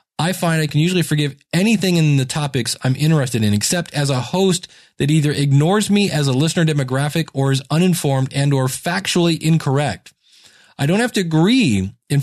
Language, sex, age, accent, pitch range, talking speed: English, male, 20-39, American, 125-170 Hz, 185 wpm